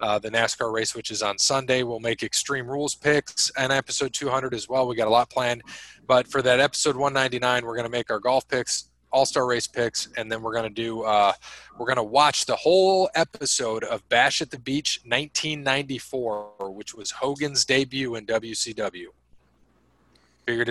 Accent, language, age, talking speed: American, English, 20-39, 190 wpm